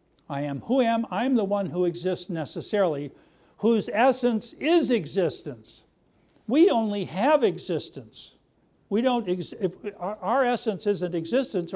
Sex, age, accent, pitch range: male, 60-79, American, 180-240 Hz